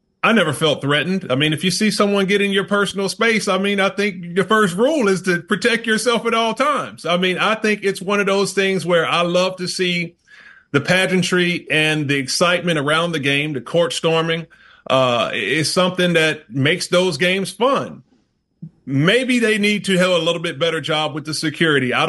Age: 30-49